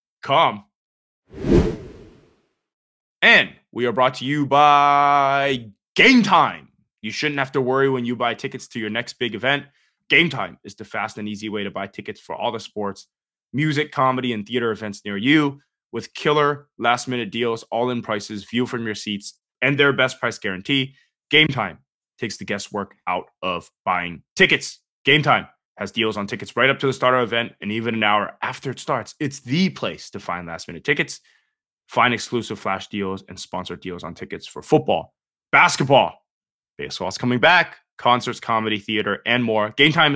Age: 20-39